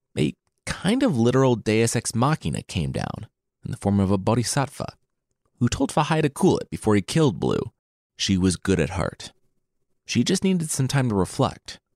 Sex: male